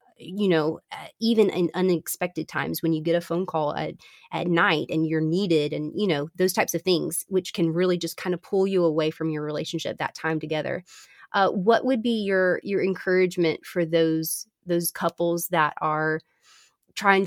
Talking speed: 190 wpm